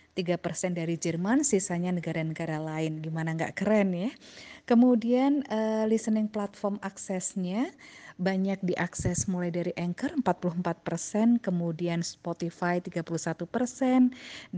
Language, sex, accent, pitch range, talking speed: Indonesian, female, native, 165-205 Hz, 100 wpm